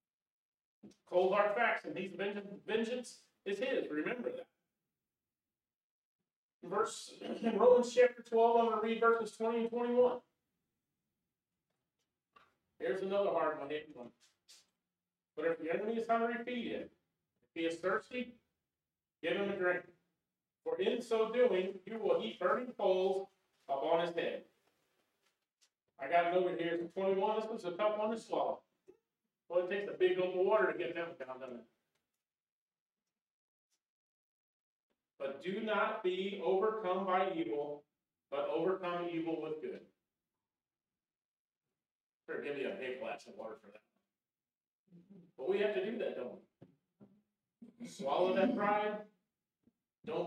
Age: 40-59